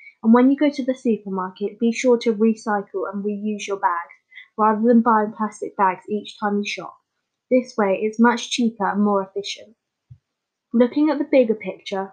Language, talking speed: English, 185 wpm